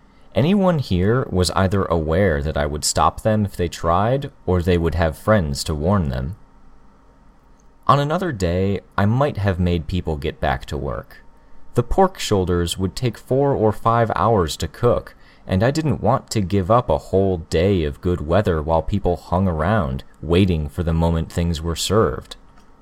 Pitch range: 70-100 Hz